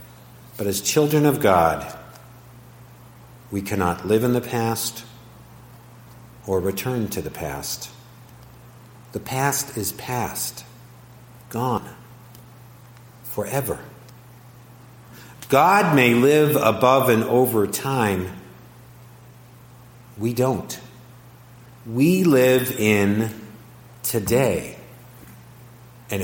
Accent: American